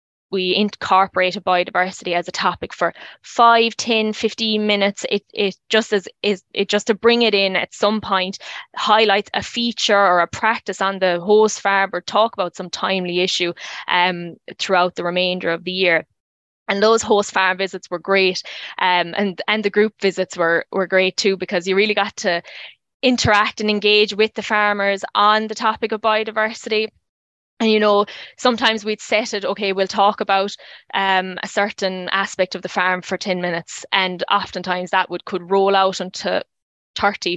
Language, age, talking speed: English, 20-39, 180 wpm